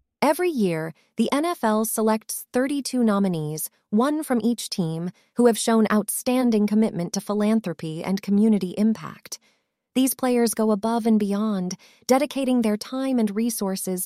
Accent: American